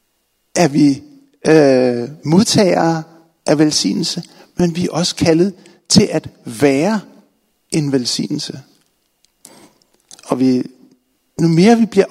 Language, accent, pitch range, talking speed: Danish, native, 165-210 Hz, 110 wpm